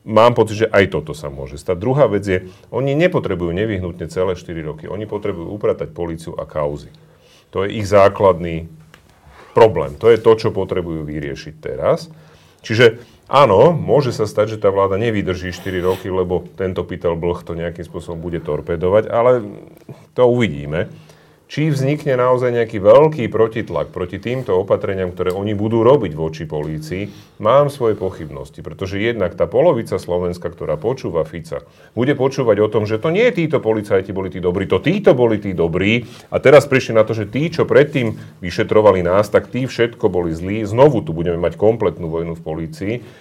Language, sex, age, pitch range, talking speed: Slovak, male, 40-59, 85-120 Hz, 175 wpm